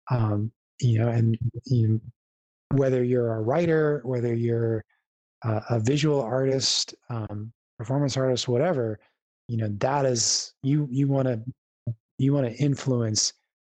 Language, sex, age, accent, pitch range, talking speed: English, male, 20-39, American, 110-130 Hz, 140 wpm